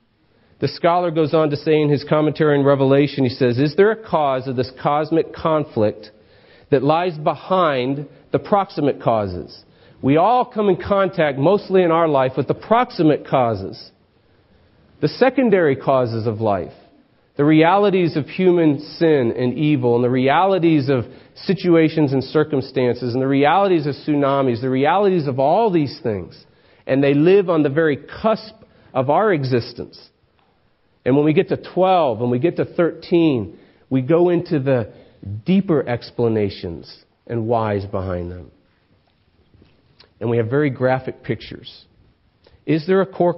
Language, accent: English, American